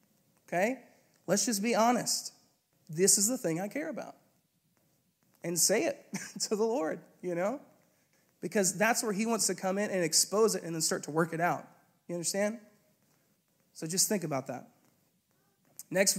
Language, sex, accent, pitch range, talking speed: English, male, American, 155-195 Hz, 170 wpm